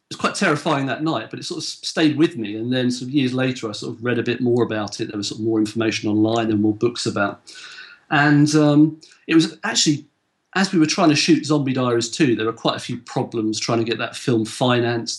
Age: 40-59